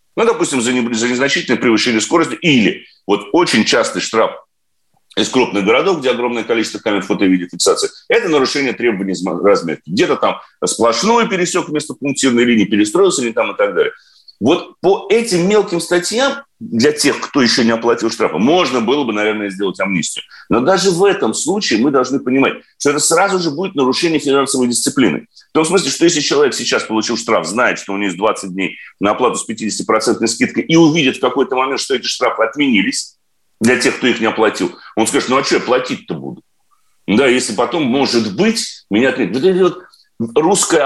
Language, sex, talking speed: Russian, male, 185 wpm